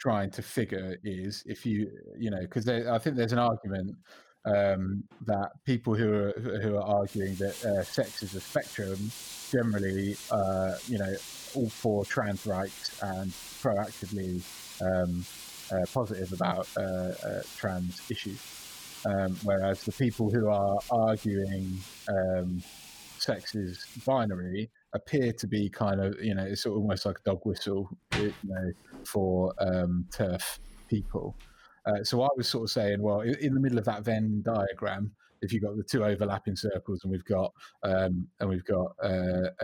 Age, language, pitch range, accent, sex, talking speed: 30-49, English, 95-110 Hz, British, male, 165 wpm